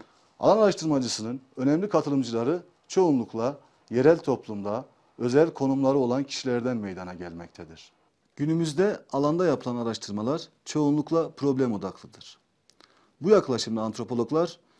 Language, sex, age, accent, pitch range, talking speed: Turkish, male, 40-59, native, 115-150 Hz, 95 wpm